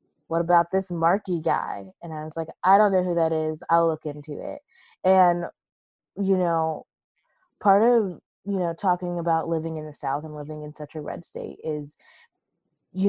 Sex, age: female, 20-39